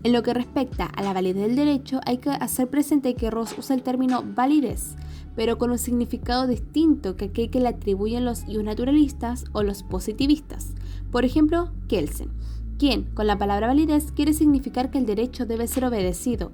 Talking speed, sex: 180 wpm, female